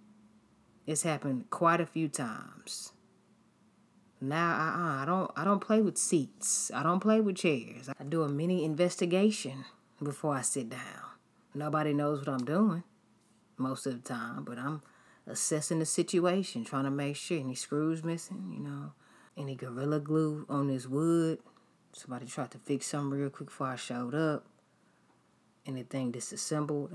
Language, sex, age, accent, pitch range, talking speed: English, female, 30-49, American, 135-175 Hz, 155 wpm